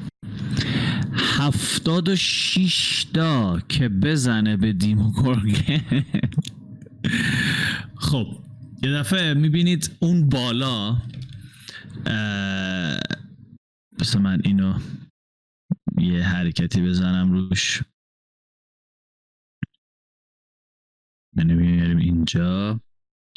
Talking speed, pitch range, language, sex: 60 wpm, 115-150 Hz, Persian, male